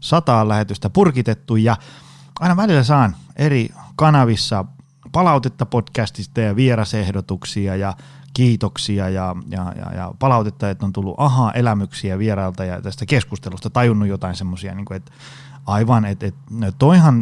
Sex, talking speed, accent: male, 130 wpm, native